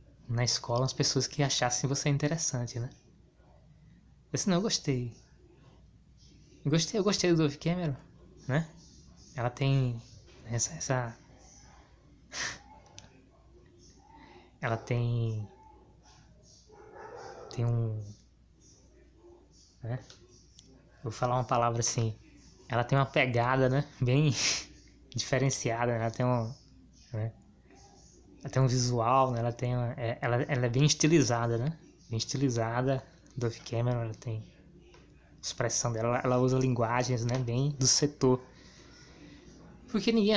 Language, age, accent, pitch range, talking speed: Portuguese, 20-39, Brazilian, 115-145 Hz, 120 wpm